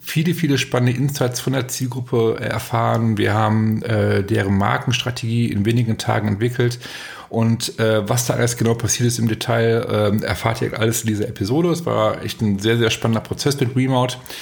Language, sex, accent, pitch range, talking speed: German, male, German, 110-125 Hz, 185 wpm